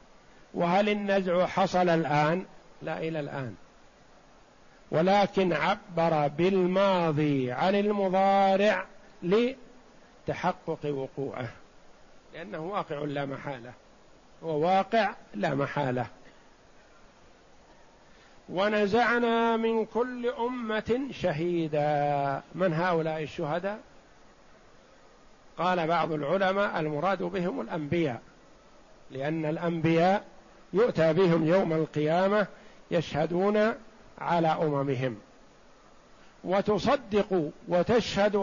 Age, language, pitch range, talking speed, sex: 50-69, Arabic, 155-210 Hz, 75 wpm, male